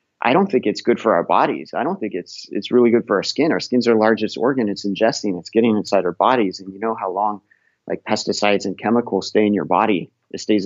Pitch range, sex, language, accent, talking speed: 105-120 Hz, male, English, American, 255 wpm